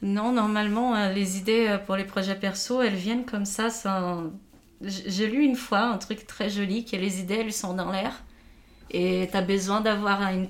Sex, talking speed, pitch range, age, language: female, 195 wpm, 190-230 Hz, 30-49, French